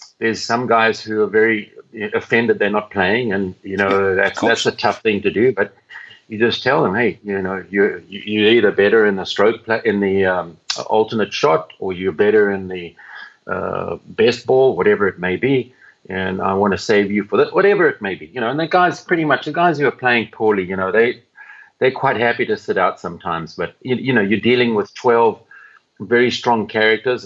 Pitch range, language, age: 95-120 Hz, English, 50-69